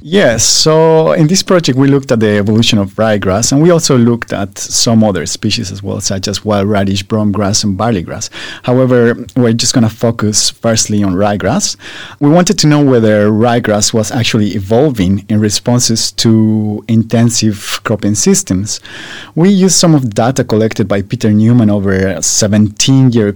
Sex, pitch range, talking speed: male, 105-130 Hz, 170 wpm